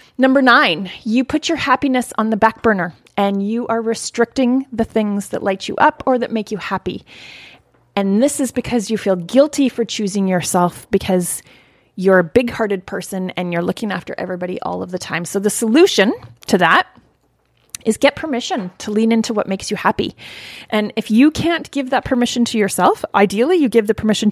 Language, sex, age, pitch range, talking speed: English, female, 30-49, 195-245 Hz, 195 wpm